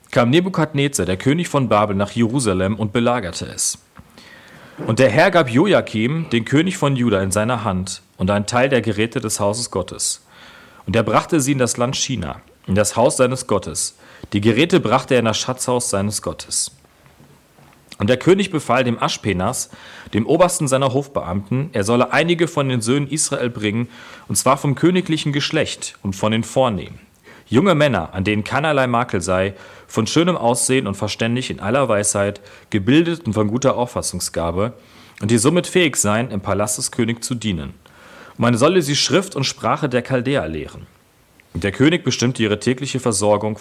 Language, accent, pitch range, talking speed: German, German, 105-135 Hz, 175 wpm